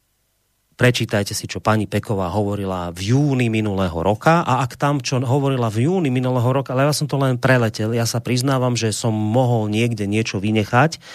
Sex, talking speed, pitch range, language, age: male, 185 wpm, 115-160 Hz, Slovak, 30-49